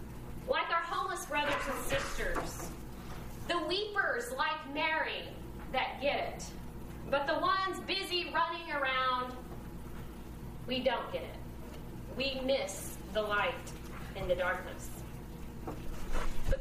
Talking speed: 110 wpm